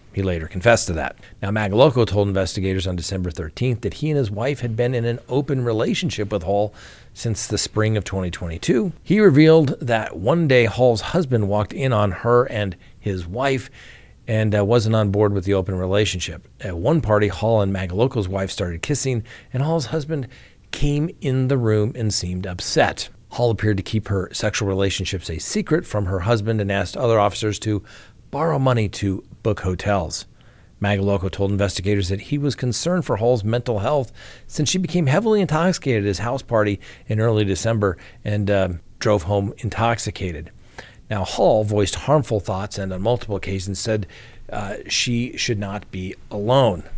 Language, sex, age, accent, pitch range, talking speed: English, male, 40-59, American, 100-125 Hz, 175 wpm